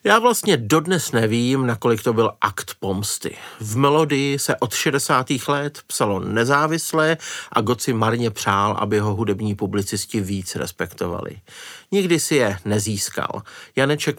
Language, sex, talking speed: Czech, male, 135 wpm